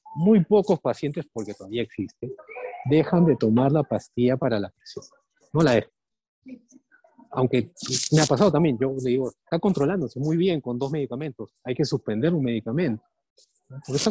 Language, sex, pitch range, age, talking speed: Spanish, male, 120-185 Hz, 40-59, 165 wpm